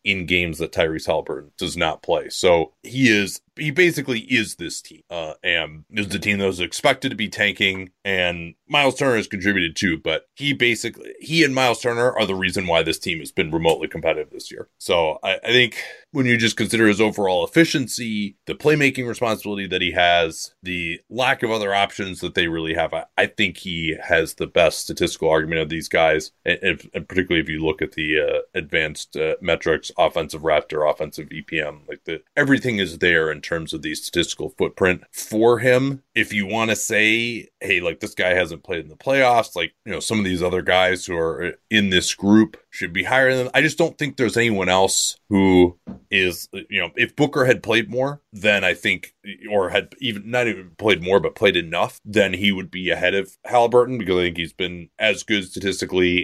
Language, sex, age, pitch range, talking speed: English, male, 30-49, 90-125 Hz, 210 wpm